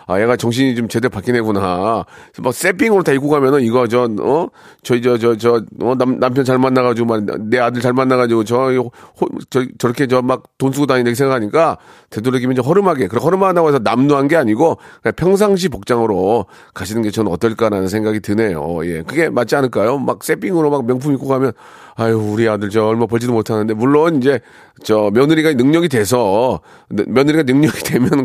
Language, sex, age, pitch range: Korean, male, 40-59, 110-135 Hz